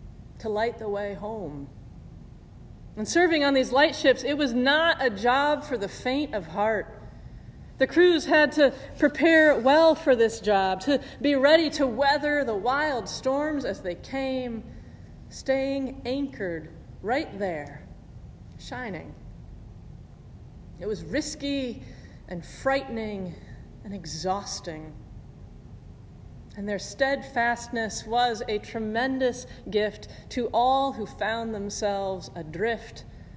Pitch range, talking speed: 205-275 Hz, 120 wpm